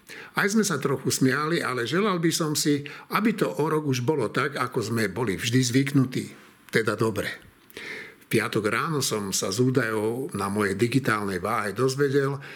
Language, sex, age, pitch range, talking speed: Slovak, male, 60-79, 120-160 Hz, 170 wpm